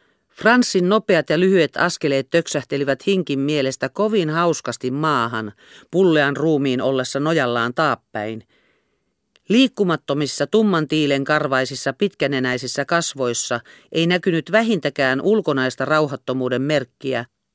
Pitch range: 135-185 Hz